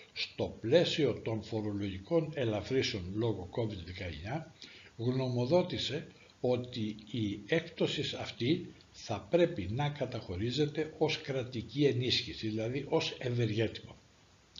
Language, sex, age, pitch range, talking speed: Greek, male, 60-79, 105-140 Hz, 90 wpm